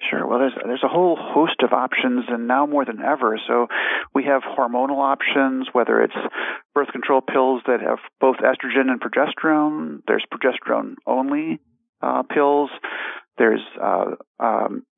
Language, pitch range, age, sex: English, 125-140 Hz, 40-59, male